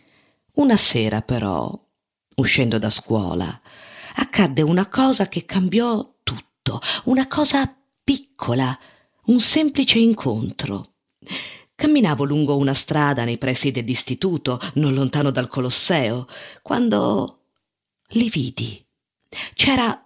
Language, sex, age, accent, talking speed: Italian, female, 50-69, native, 100 wpm